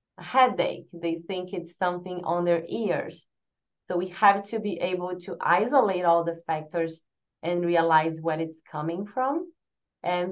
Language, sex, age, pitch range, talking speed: English, female, 30-49, 170-205 Hz, 150 wpm